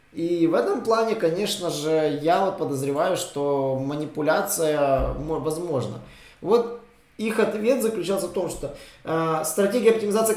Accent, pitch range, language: native, 140-195 Hz, Russian